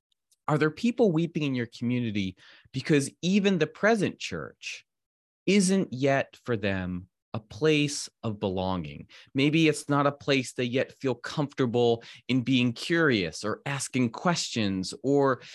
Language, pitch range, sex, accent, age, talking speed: English, 115-160 Hz, male, American, 30-49, 140 wpm